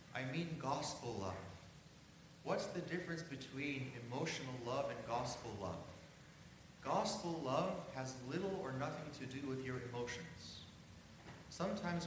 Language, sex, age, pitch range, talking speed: English, male, 30-49, 125-160 Hz, 125 wpm